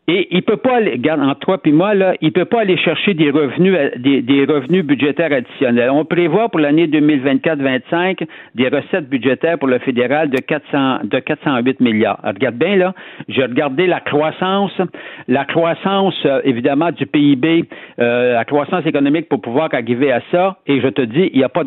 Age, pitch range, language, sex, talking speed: 60-79, 130-190 Hz, French, male, 190 wpm